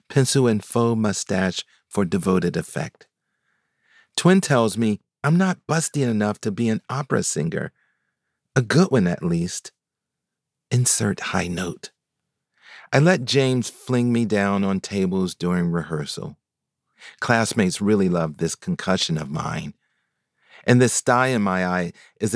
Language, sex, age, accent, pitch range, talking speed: English, male, 40-59, American, 95-135 Hz, 135 wpm